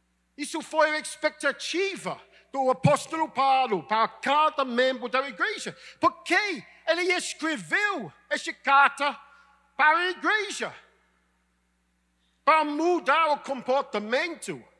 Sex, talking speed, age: male, 95 wpm, 50-69